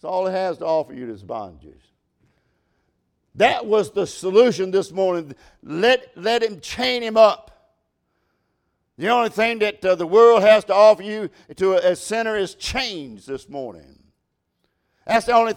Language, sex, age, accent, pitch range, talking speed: English, male, 60-79, American, 195-240 Hz, 160 wpm